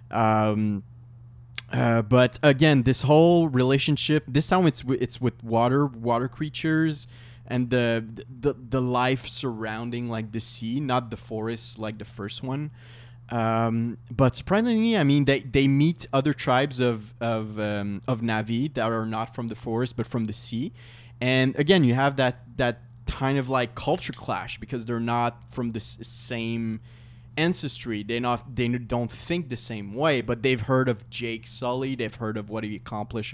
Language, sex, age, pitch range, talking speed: English, male, 20-39, 115-135 Hz, 165 wpm